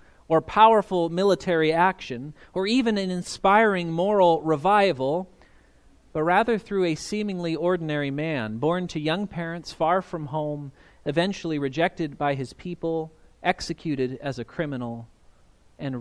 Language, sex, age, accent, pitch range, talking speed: English, male, 40-59, American, 130-175 Hz, 125 wpm